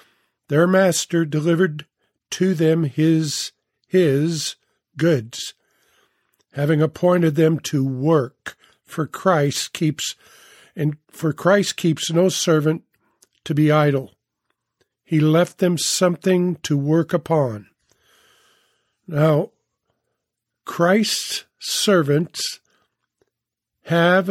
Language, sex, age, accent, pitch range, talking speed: English, male, 50-69, American, 150-180 Hz, 90 wpm